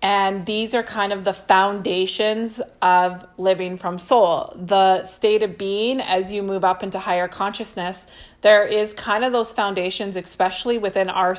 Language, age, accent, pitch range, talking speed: English, 30-49, American, 180-215 Hz, 165 wpm